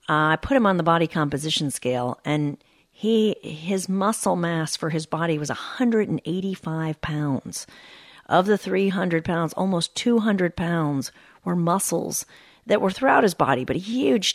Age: 40-59